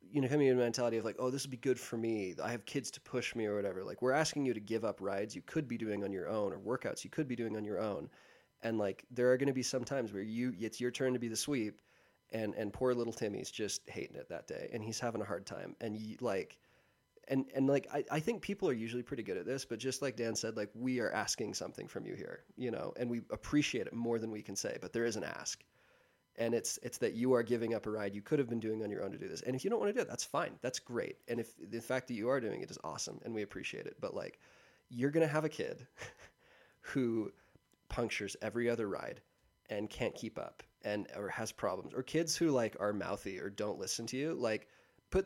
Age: 20-39